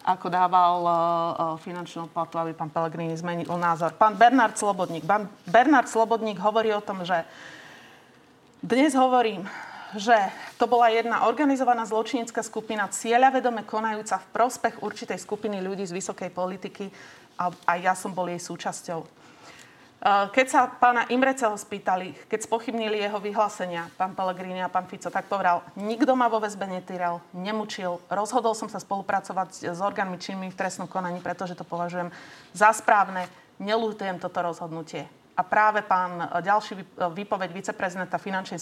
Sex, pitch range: female, 185-225 Hz